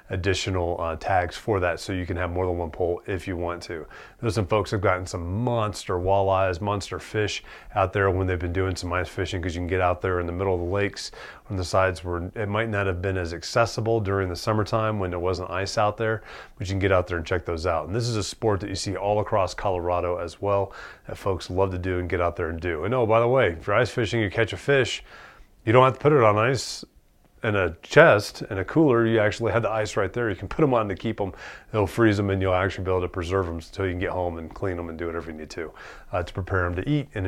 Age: 30-49